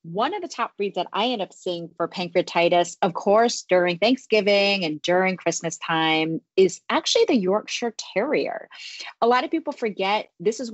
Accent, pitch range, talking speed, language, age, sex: American, 170-225 Hz, 180 wpm, English, 30-49, female